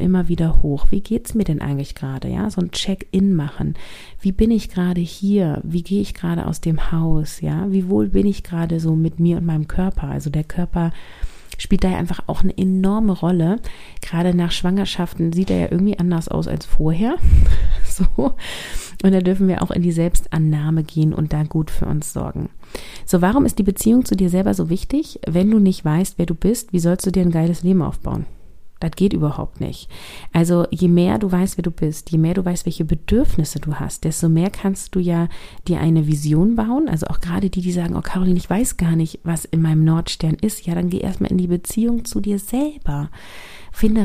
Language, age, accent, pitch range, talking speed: German, 30-49, German, 160-195 Hz, 215 wpm